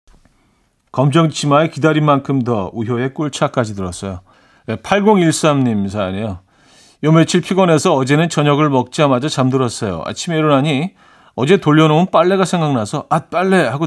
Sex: male